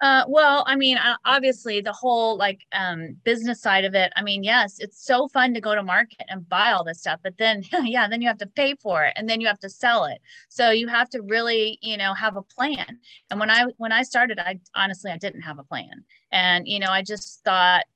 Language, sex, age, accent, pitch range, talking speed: English, female, 30-49, American, 180-225 Hz, 245 wpm